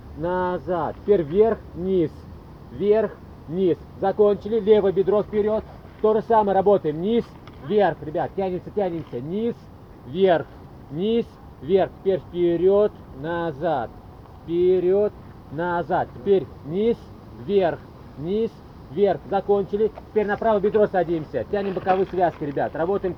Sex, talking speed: male, 110 wpm